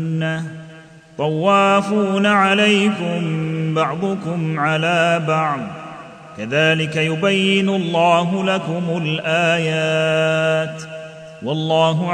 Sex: male